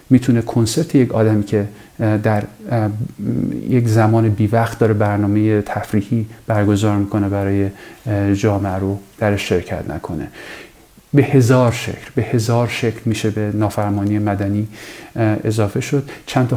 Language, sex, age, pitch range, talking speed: English, male, 40-59, 110-125 Hz, 120 wpm